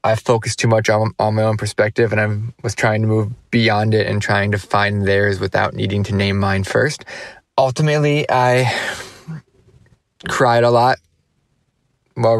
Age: 20-39